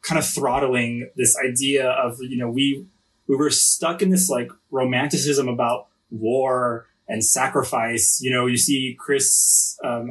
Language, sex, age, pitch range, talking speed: English, male, 20-39, 120-145 Hz, 155 wpm